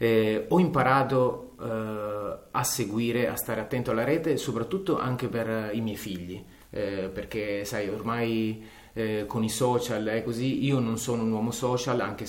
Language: Italian